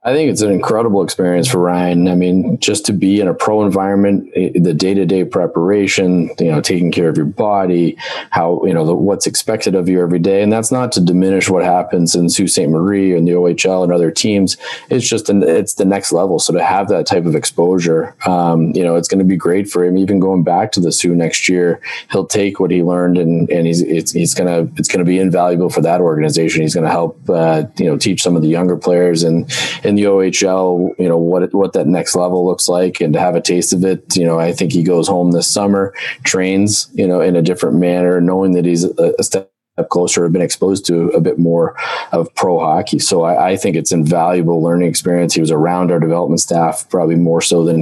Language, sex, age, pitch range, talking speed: English, male, 30-49, 85-95 Hz, 235 wpm